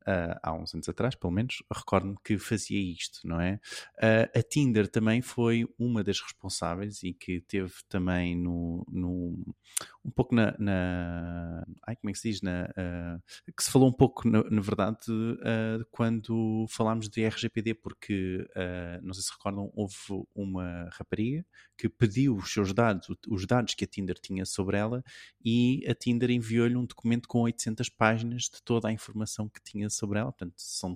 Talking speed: 180 wpm